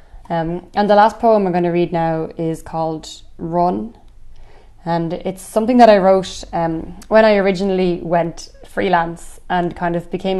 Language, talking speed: English, 165 wpm